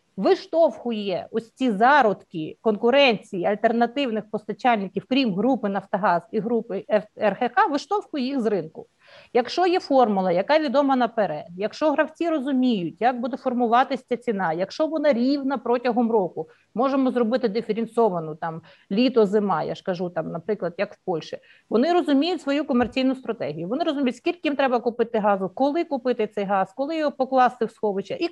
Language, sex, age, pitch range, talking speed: Ukrainian, female, 50-69, 210-270 Hz, 150 wpm